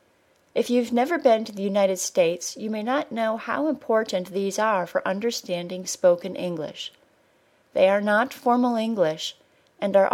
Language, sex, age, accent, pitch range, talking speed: English, female, 30-49, American, 175-230 Hz, 160 wpm